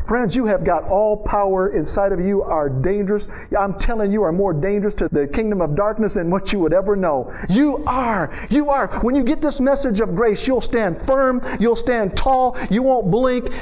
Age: 50-69